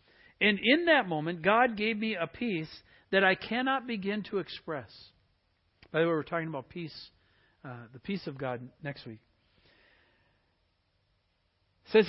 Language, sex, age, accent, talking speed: English, male, 60-79, American, 150 wpm